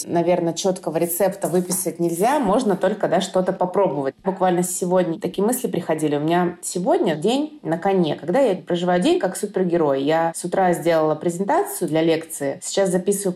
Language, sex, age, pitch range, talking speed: Russian, female, 20-39, 165-195 Hz, 155 wpm